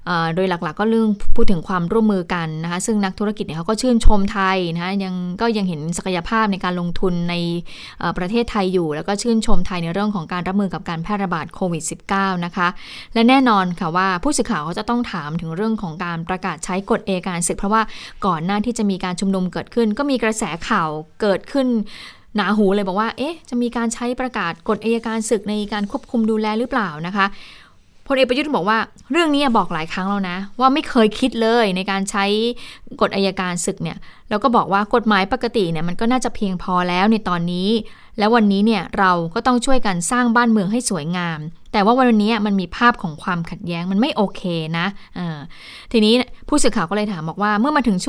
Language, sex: Thai, female